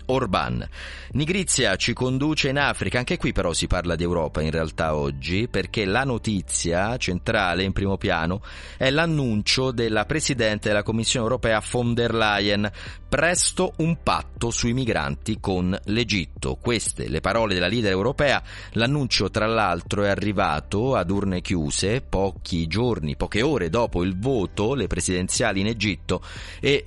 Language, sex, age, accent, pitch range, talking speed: Italian, male, 30-49, native, 85-120 Hz, 145 wpm